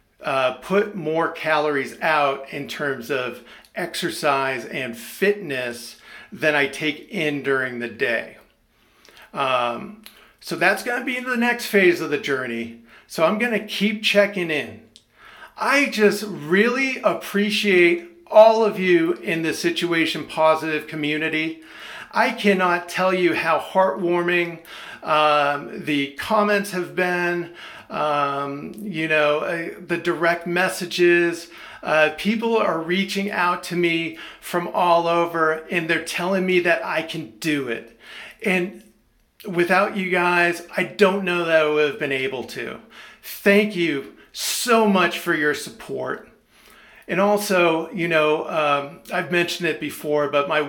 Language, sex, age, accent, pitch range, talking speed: English, male, 50-69, American, 155-195 Hz, 140 wpm